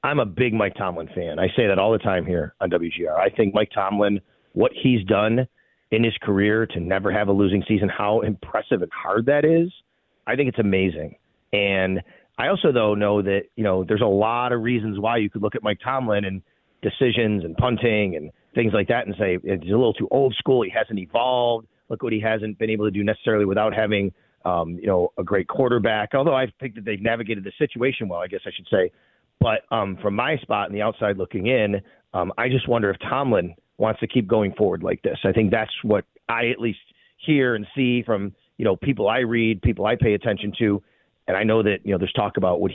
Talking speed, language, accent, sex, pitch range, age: 230 wpm, English, American, male, 100-125 Hz, 30-49